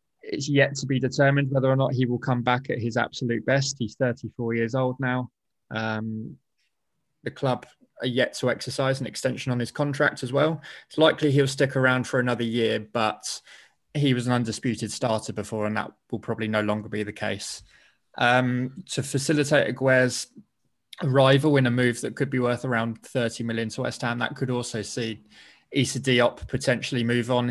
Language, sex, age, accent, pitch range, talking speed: English, male, 20-39, British, 115-130 Hz, 185 wpm